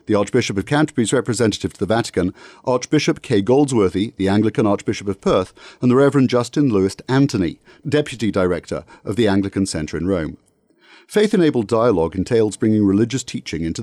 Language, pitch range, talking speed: English, 95-140 Hz, 160 wpm